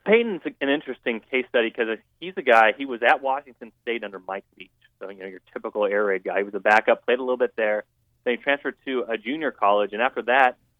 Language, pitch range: English, 105-130 Hz